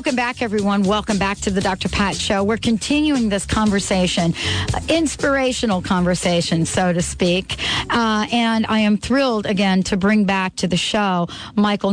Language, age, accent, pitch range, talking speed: English, 40-59, American, 180-220 Hz, 165 wpm